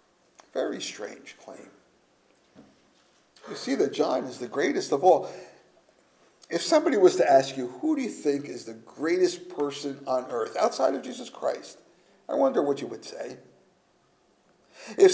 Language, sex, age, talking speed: English, male, 50-69, 155 wpm